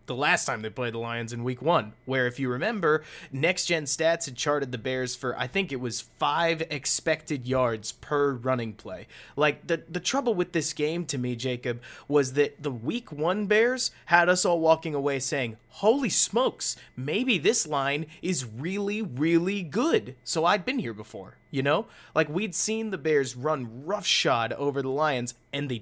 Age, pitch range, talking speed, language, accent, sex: 30-49, 125-170 Hz, 190 wpm, English, American, male